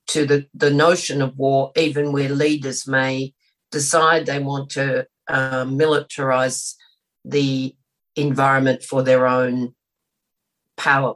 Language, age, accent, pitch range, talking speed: English, 50-69, Australian, 130-155 Hz, 120 wpm